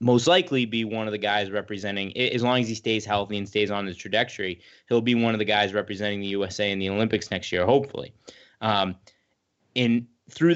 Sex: male